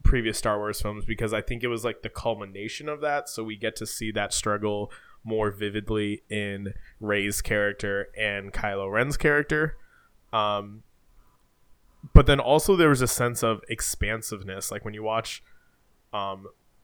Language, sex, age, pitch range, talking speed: English, male, 20-39, 105-120 Hz, 160 wpm